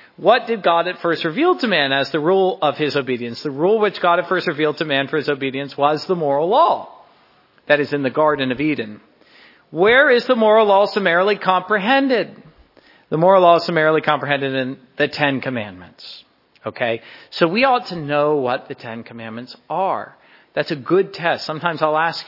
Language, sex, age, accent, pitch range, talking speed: English, male, 40-59, American, 140-215 Hz, 195 wpm